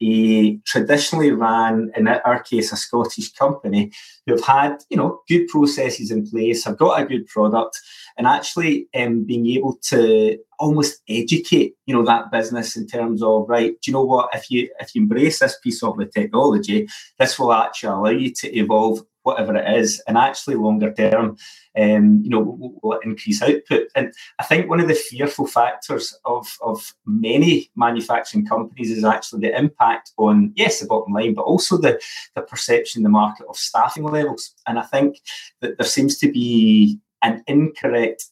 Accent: British